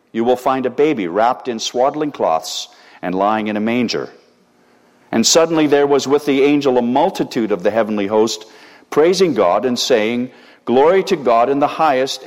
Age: 50-69